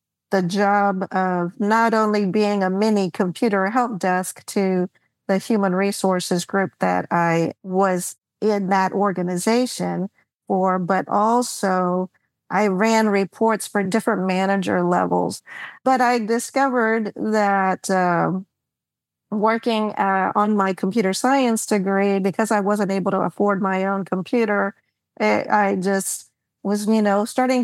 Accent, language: American, English